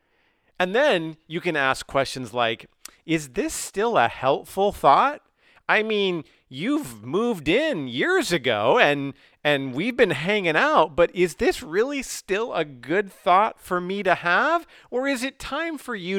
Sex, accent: male, American